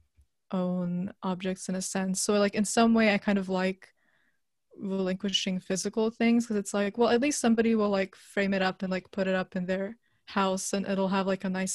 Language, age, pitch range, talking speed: English, 20-39, 190-220 Hz, 220 wpm